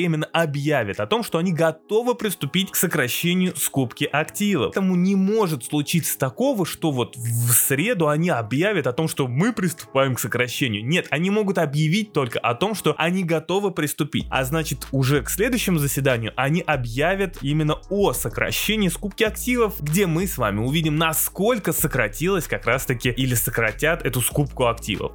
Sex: male